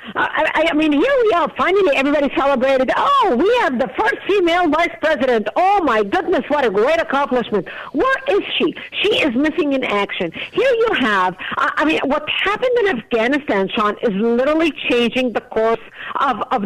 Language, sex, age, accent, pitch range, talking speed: English, female, 50-69, American, 235-310 Hz, 185 wpm